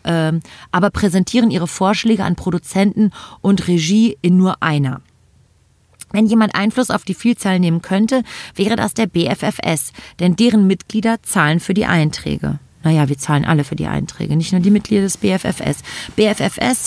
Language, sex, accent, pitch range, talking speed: German, female, German, 170-215 Hz, 155 wpm